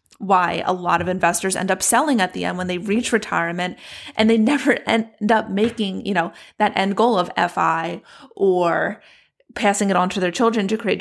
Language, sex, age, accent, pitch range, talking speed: English, female, 30-49, American, 180-220 Hz, 200 wpm